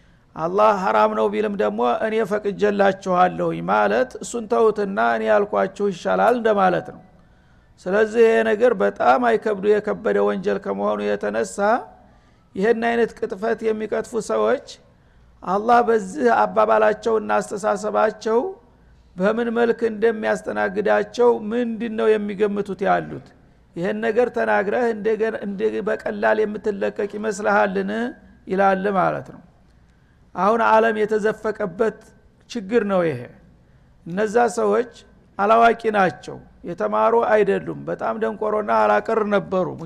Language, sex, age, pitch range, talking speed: Amharic, male, 60-79, 185-225 Hz, 95 wpm